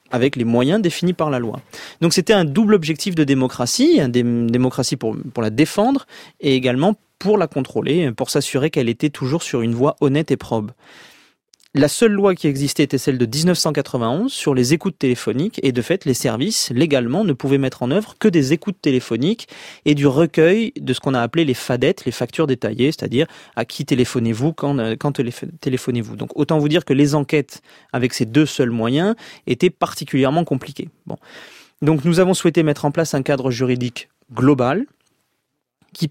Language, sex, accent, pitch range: French, male, French, 125-165 Hz